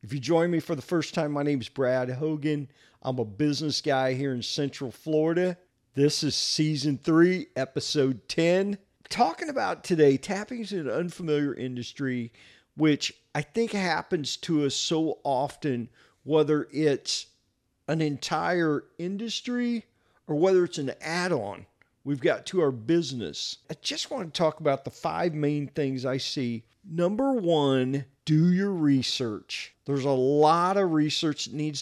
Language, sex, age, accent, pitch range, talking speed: English, male, 40-59, American, 135-170 Hz, 155 wpm